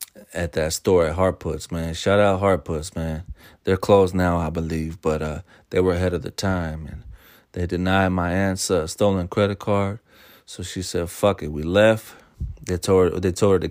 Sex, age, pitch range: male, 30-49, 85-95 Hz